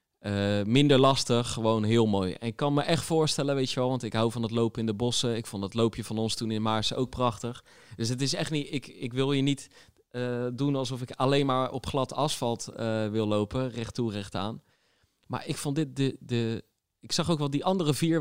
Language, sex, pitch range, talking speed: Dutch, male, 115-150 Hz, 230 wpm